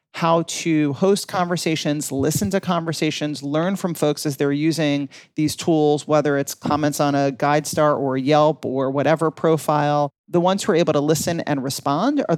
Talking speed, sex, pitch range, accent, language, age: 175 wpm, male, 145-175 Hz, American, English, 40-59